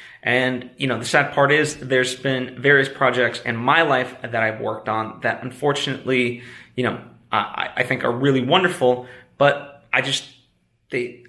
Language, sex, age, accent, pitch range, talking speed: English, male, 20-39, American, 115-135 Hz, 170 wpm